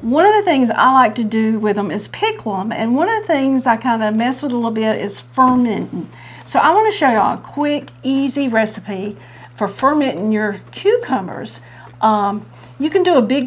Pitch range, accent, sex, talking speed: 210-265 Hz, American, female, 205 wpm